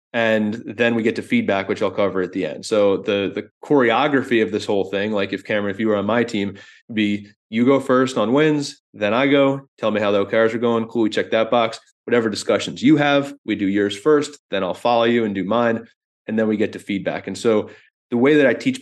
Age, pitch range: 30-49, 100-125 Hz